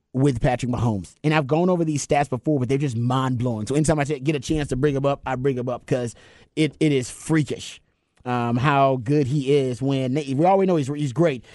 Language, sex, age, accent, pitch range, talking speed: English, male, 30-49, American, 120-160 Hz, 240 wpm